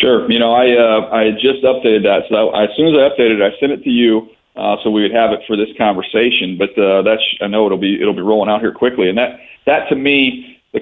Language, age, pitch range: English, 40-59, 100-120 Hz